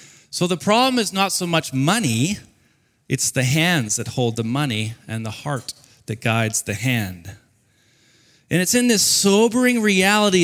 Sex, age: male, 40-59